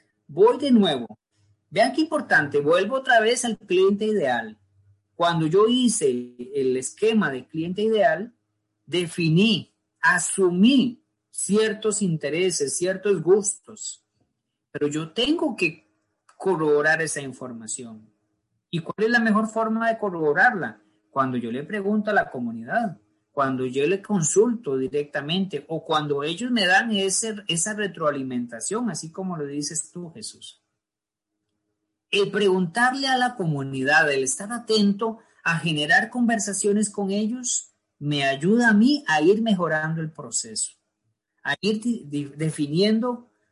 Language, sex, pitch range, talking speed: Spanish, male, 135-220 Hz, 130 wpm